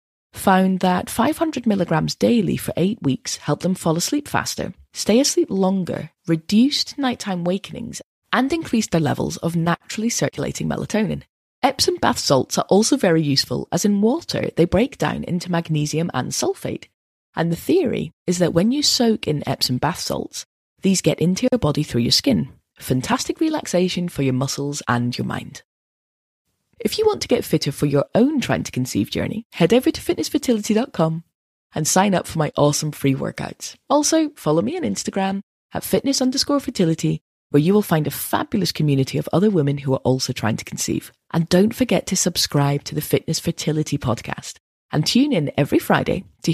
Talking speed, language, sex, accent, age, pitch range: 175 wpm, English, female, British, 20-39, 150-230 Hz